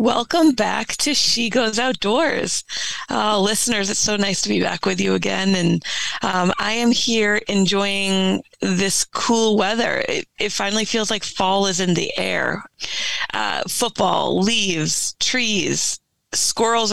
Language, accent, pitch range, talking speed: English, American, 185-230 Hz, 145 wpm